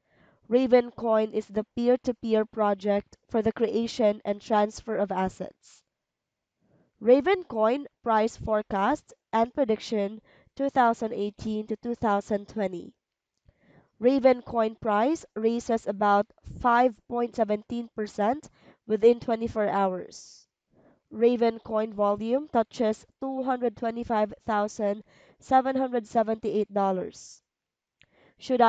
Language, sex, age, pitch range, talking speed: English, female, 20-39, 210-240 Hz, 75 wpm